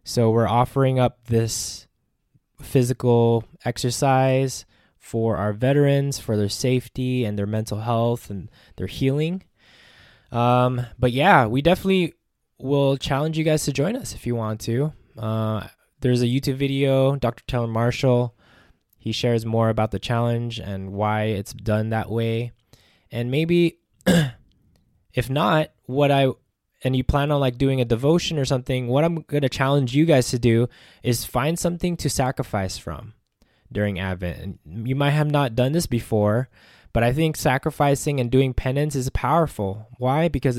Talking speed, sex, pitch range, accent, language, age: 160 wpm, male, 115-140 Hz, American, English, 20-39